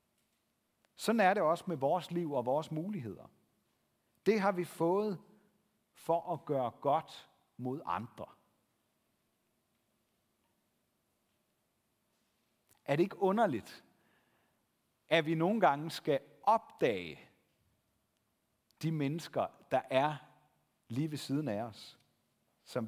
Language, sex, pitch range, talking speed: Danish, male, 135-195 Hz, 105 wpm